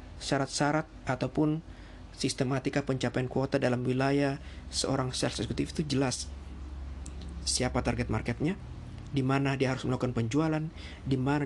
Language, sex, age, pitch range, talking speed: Indonesian, male, 50-69, 110-145 Hz, 110 wpm